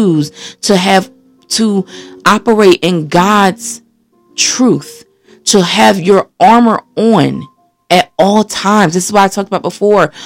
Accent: American